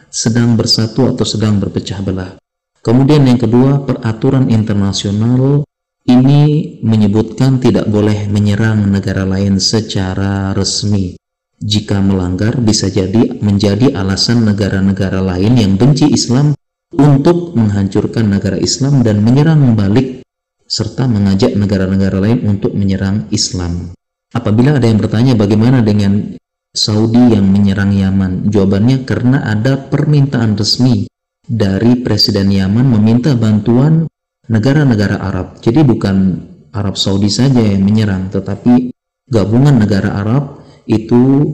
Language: Indonesian